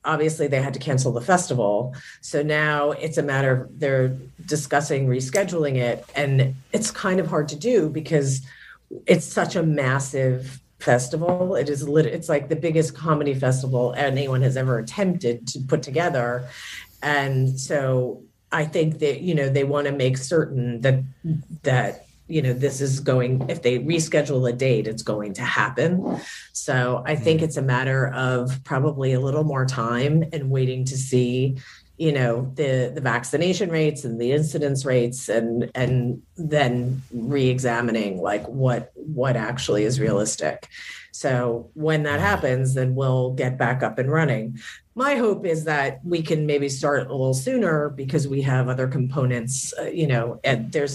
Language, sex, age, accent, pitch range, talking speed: English, female, 40-59, American, 125-150 Hz, 165 wpm